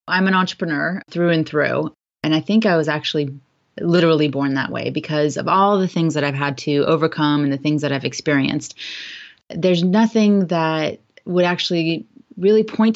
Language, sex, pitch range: English, female, 150-185 Hz